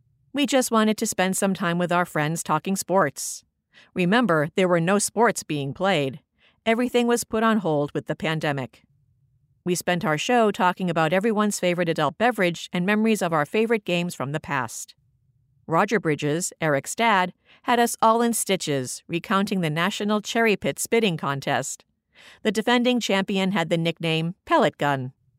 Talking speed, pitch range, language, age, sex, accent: 165 wpm, 145-205 Hz, English, 50-69, female, American